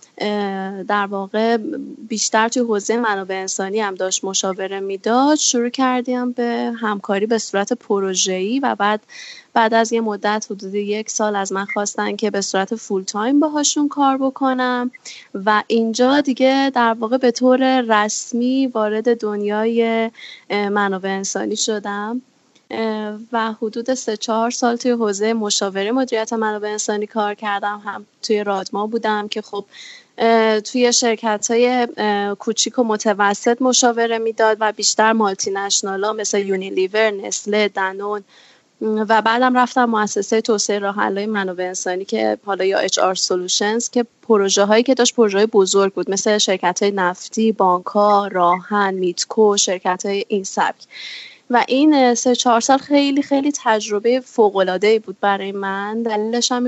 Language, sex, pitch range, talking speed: Persian, female, 200-240 Hz, 140 wpm